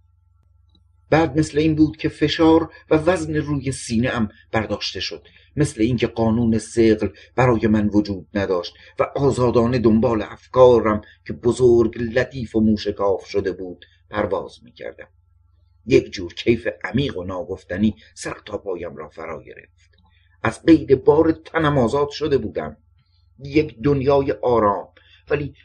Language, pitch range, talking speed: Persian, 90-140 Hz, 135 wpm